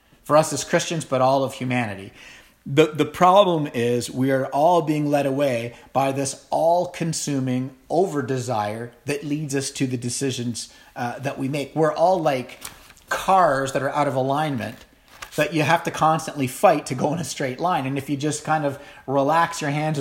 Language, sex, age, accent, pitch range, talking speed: English, male, 40-59, American, 125-150 Hz, 185 wpm